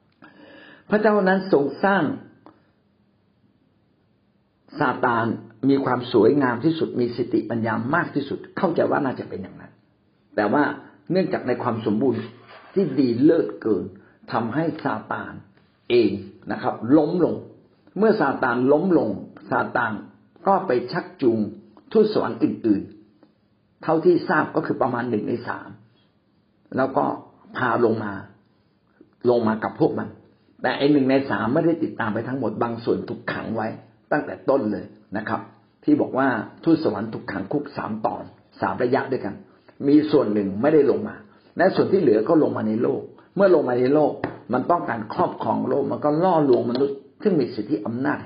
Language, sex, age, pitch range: Thai, male, 60-79, 110-160 Hz